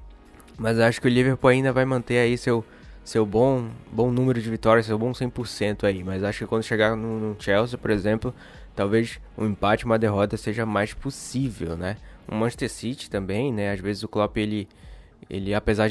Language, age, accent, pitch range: Portuguese, 20-39, Brazilian, 105-125 Hz